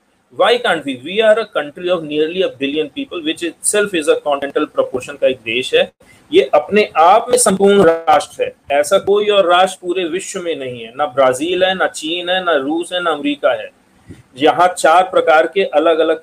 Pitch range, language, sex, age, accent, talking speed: 150-200 Hz, English, male, 40-59, Indian, 190 wpm